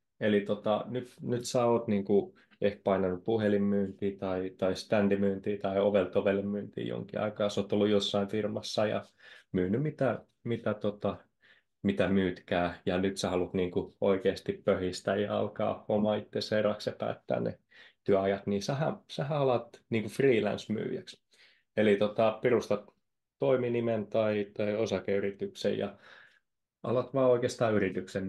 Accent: native